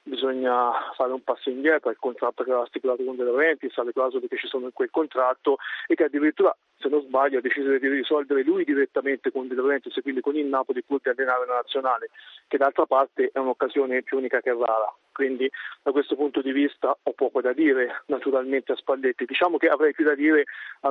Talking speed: 210 wpm